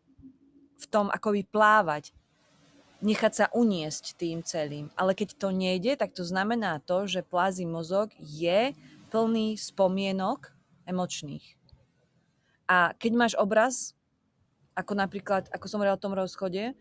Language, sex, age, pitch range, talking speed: Slovak, female, 30-49, 170-210 Hz, 130 wpm